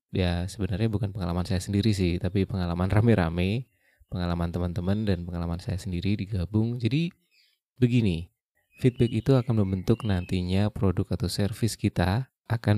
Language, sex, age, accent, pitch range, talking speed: Indonesian, male, 20-39, native, 95-115 Hz, 135 wpm